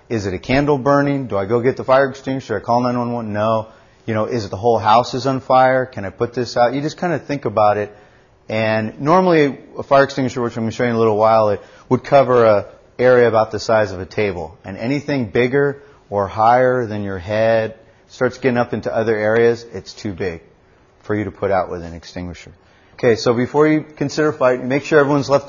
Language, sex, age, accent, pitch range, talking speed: English, male, 30-49, American, 105-130 Hz, 235 wpm